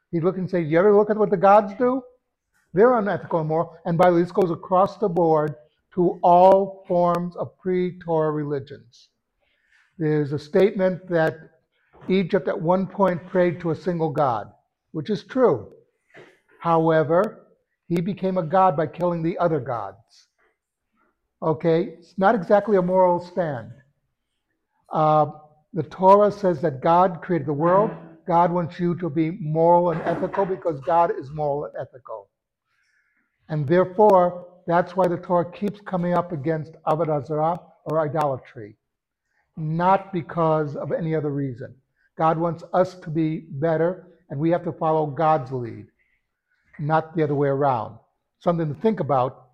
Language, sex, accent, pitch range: English, male, American, 155-185 Hz